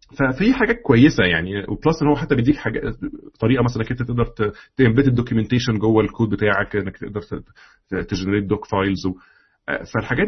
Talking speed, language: 165 wpm, Arabic